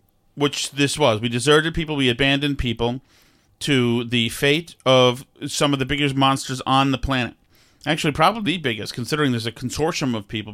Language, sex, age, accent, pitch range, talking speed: English, male, 40-59, American, 115-155 Hz, 175 wpm